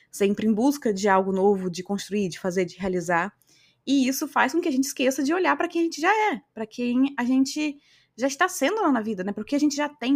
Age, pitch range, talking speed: 20-39, 185-240 Hz, 260 wpm